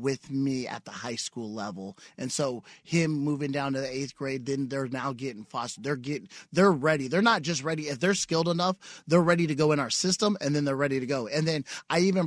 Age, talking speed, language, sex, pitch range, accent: 30-49, 245 wpm, English, male, 140-165 Hz, American